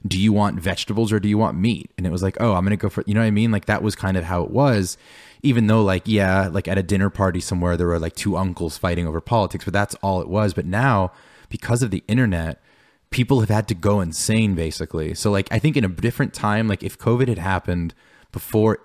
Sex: male